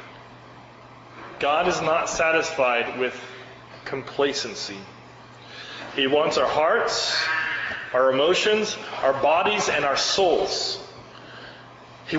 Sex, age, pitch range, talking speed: male, 30-49, 165-230 Hz, 90 wpm